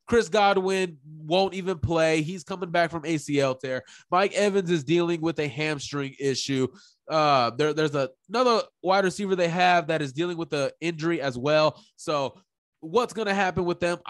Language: English